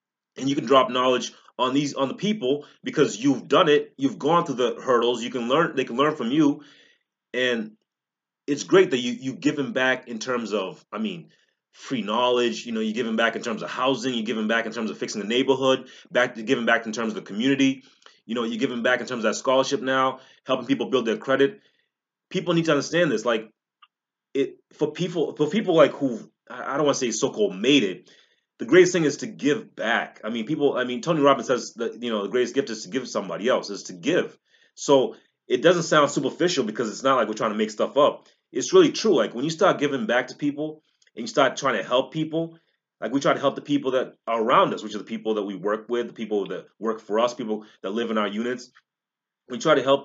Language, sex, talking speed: English, male, 250 wpm